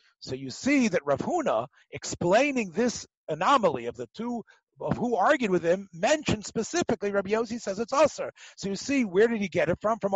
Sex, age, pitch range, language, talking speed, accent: male, 50-69, 155-225 Hz, English, 195 wpm, American